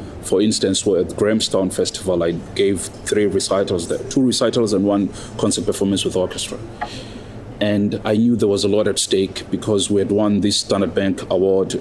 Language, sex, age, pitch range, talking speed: English, male, 30-49, 100-115 Hz, 195 wpm